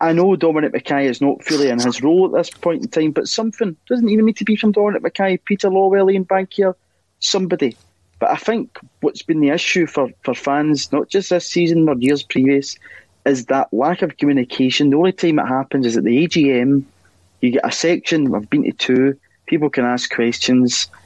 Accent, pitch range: British, 125-175 Hz